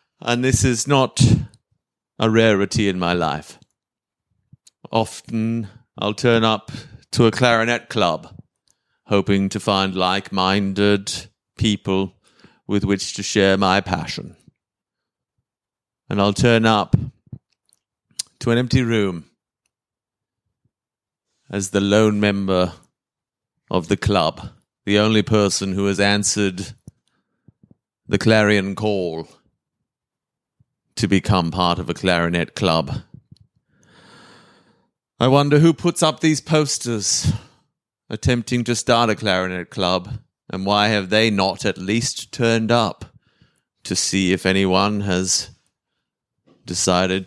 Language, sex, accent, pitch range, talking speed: English, male, British, 95-115 Hz, 110 wpm